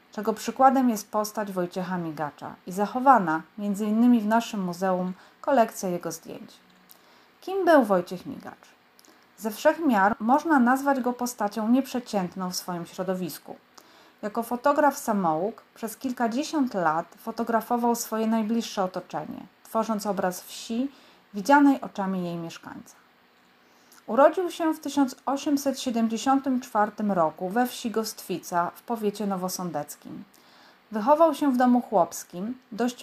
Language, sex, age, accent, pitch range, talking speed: Polish, female, 30-49, native, 185-260 Hz, 120 wpm